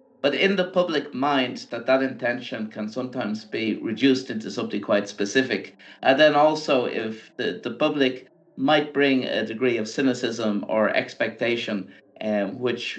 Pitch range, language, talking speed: 110-140 Hz, English, 150 wpm